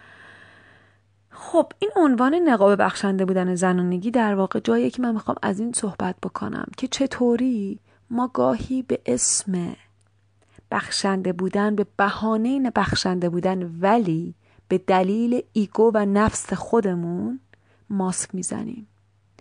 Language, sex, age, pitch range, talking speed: Persian, female, 30-49, 180-240 Hz, 120 wpm